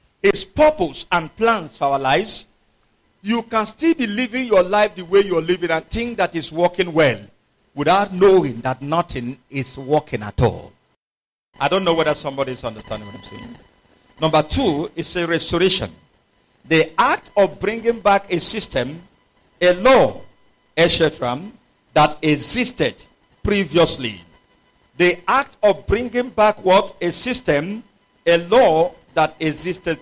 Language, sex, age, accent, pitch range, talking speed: English, male, 50-69, Nigerian, 150-200 Hz, 140 wpm